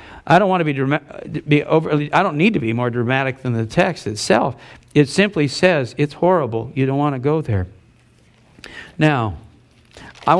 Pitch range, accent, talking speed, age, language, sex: 130-165 Hz, American, 185 wpm, 60-79, English, male